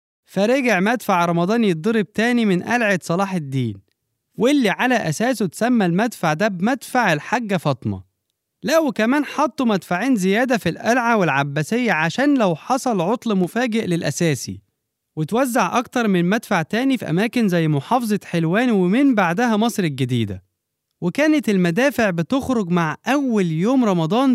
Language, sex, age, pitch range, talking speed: Arabic, male, 20-39, 170-245 Hz, 130 wpm